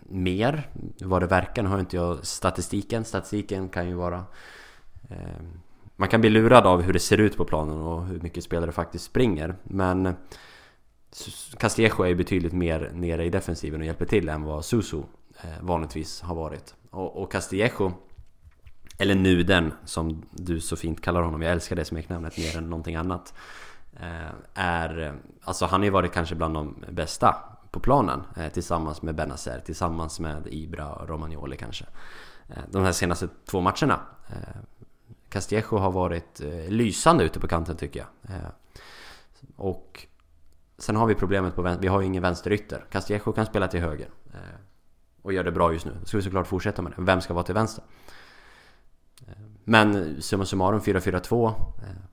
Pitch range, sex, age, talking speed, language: 80-100 Hz, male, 20-39, 165 wpm, Swedish